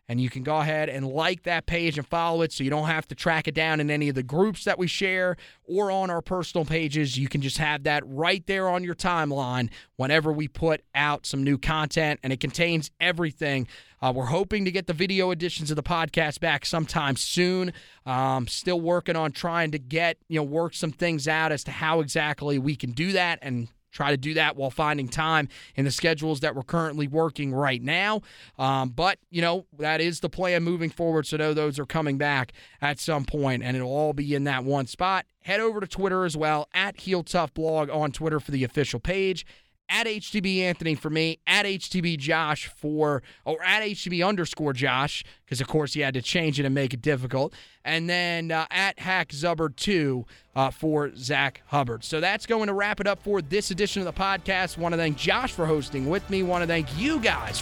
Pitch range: 145-180 Hz